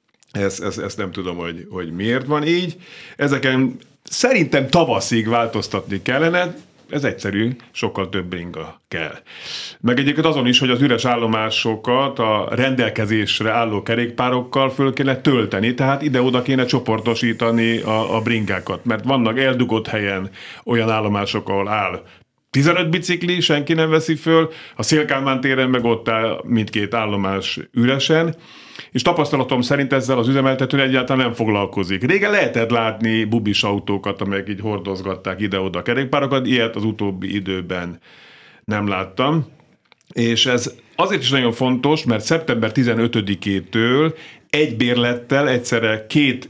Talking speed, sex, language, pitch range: 130 wpm, male, Hungarian, 105-135 Hz